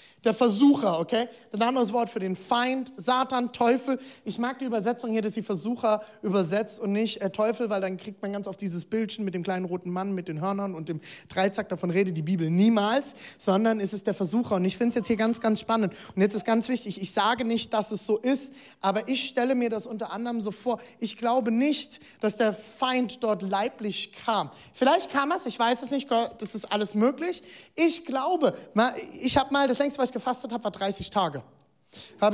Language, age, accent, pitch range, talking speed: German, 20-39, German, 210-255 Hz, 220 wpm